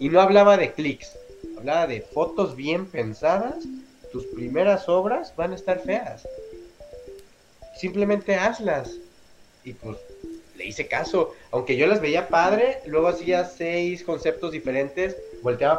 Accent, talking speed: Mexican, 135 wpm